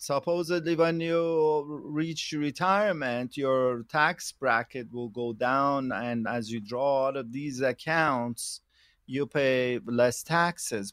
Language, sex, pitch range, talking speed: English, male, 125-155 Hz, 125 wpm